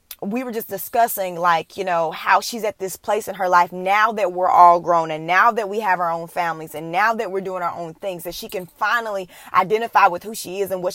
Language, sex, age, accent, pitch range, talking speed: English, female, 20-39, American, 170-215 Hz, 260 wpm